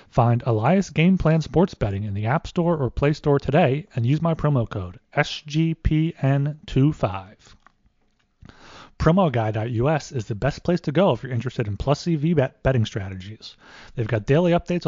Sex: male